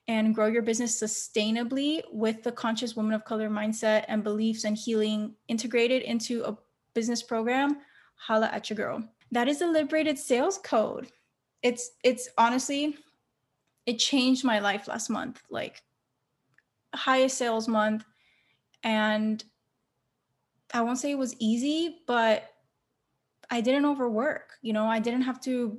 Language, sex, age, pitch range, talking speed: English, female, 20-39, 215-245 Hz, 140 wpm